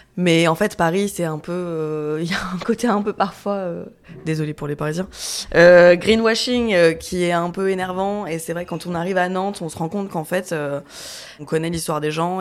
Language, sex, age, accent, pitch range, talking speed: French, female, 20-39, French, 155-185 Hz, 235 wpm